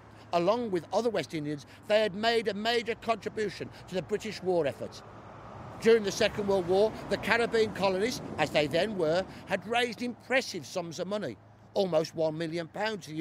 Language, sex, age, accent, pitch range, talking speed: English, male, 50-69, British, 150-210 Hz, 180 wpm